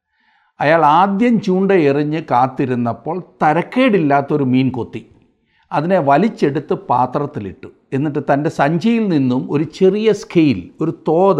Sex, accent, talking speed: male, native, 105 wpm